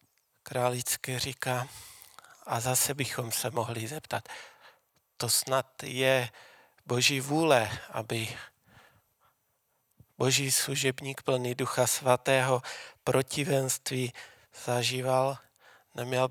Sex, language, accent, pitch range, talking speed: male, Czech, native, 120-135 Hz, 80 wpm